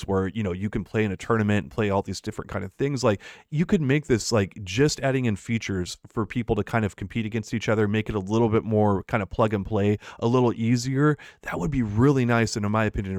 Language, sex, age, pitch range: English, male, 30-49, 105-125 Hz